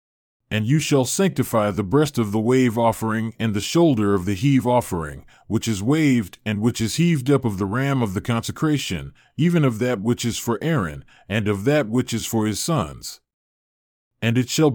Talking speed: 200 wpm